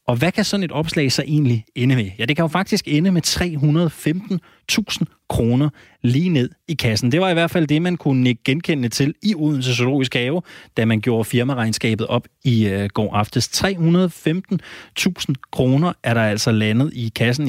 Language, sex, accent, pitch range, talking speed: Danish, male, native, 110-145 Hz, 185 wpm